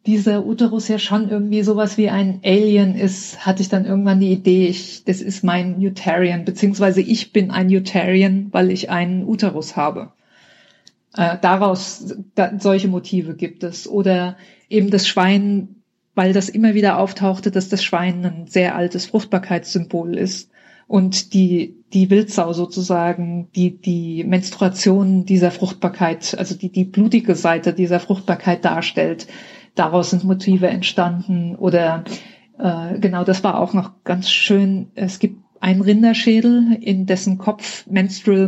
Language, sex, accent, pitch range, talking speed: German, female, German, 185-210 Hz, 145 wpm